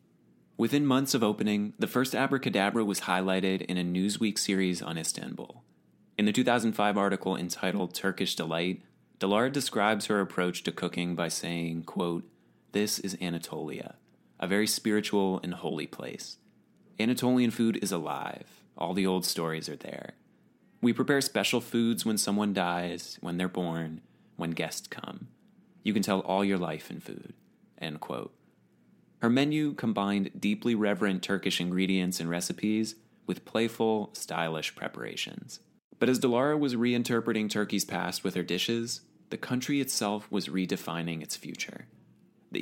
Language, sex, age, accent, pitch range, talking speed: English, male, 30-49, American, 90-115 Hz, 145 wpm